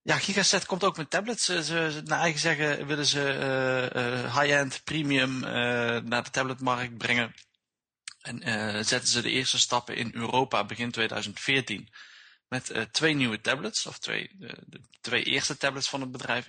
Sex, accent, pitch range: male, Dutch, 105-130 Hz